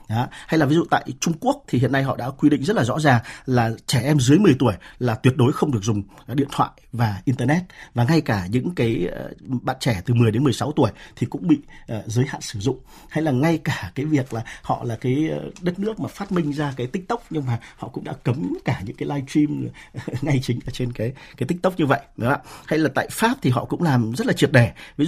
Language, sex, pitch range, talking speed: Vietnamese, male, 115-145 Hz, 255 wpm